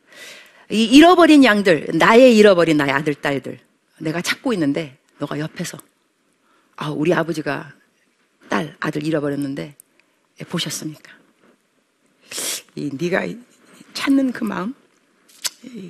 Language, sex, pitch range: Korean, female, 180-270 Hz